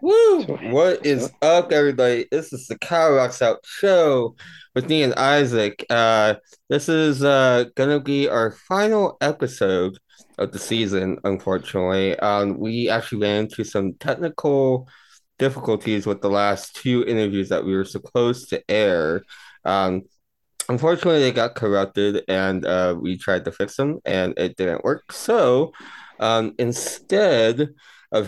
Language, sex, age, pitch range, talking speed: English, male, 20-39, 95-135 Hz, 145 wpm